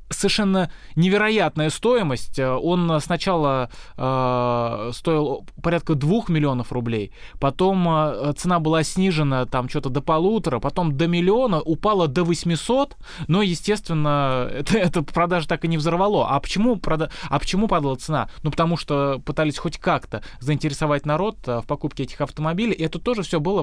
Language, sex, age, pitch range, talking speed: Russian, male, 20-39, 135-170 Hz, 150 wpm